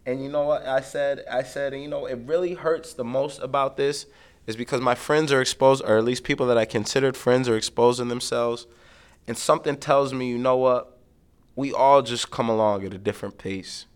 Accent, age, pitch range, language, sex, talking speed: American, 20-39, 115-145 Hz, English, male, 215 wpm